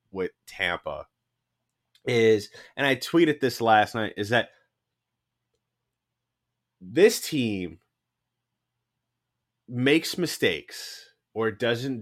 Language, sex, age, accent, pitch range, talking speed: English, male, 30-49, American, 100-120 Hz, 85 wpm